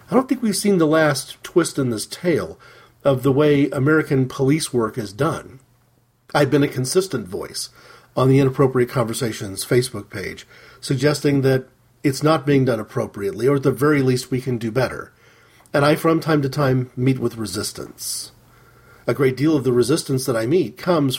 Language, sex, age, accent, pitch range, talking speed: English, male, 40-59, American, 120-150 Hz, 185 wpm